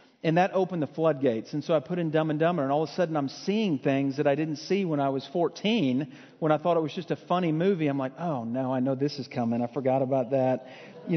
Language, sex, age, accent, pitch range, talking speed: English, male, 40-59, American, 140-170 Hz, 280 wpm